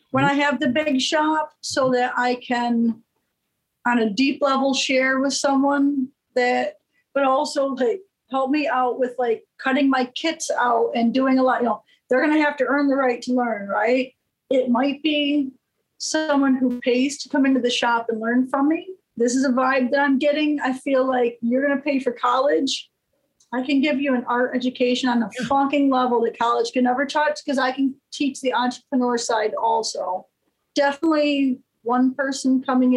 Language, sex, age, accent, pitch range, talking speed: English, female, 40-59, American, 240-275 Hz, 195 wpm